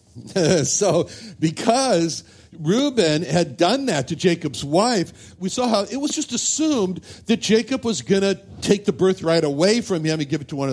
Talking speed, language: 175 wpm, English